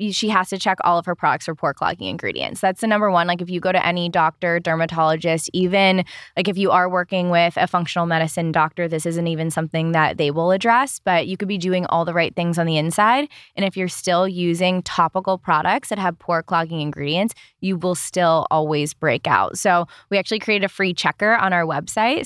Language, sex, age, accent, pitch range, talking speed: English, female, 20-39, American, 165-195 Hz, 225 wpm